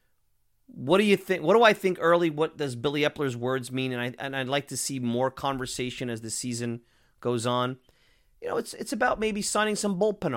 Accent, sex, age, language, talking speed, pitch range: American, male, 30-49, English, 230 wpm, 125-185 Hz